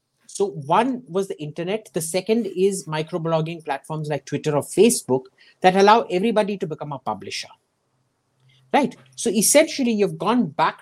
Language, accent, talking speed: English, Indian, 150 wpm